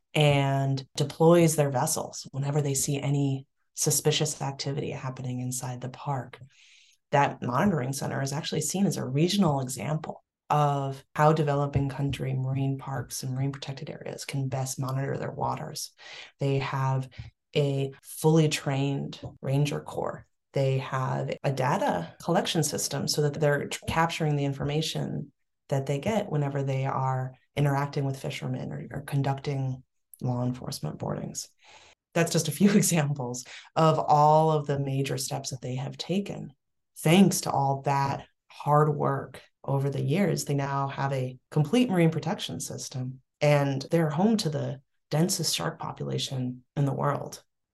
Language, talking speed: English, 145 wpm